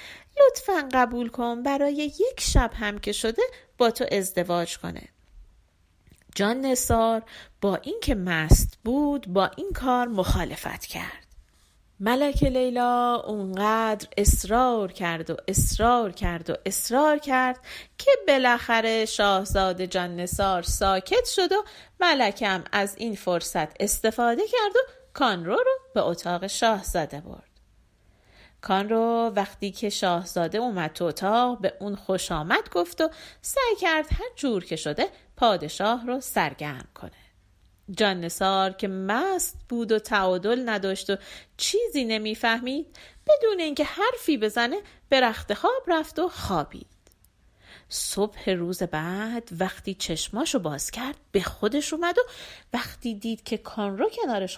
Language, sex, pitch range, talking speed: Persian, female, 190-275 Hz, 125 wpm